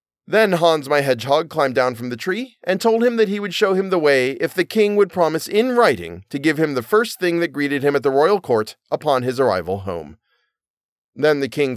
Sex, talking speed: male, 235 wpm